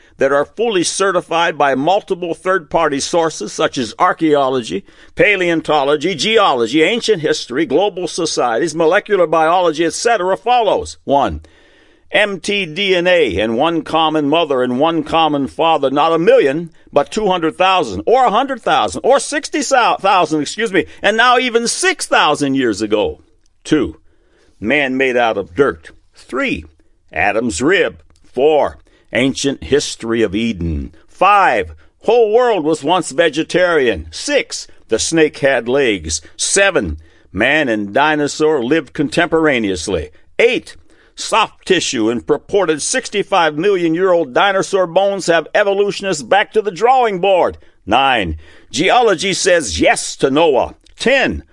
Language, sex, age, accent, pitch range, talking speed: English, male, 60-79, American, 135-195 Hz, 130 wpm